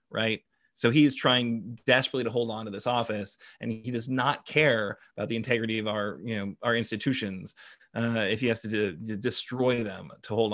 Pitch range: 110-135 Hz